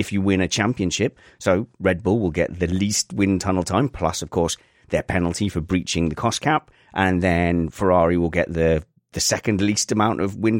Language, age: English, 30-49